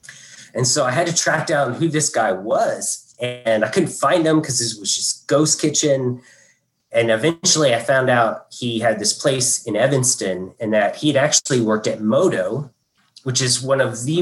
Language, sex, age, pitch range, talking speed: English, male, 30-49, 110-140 Hz, 190 wpm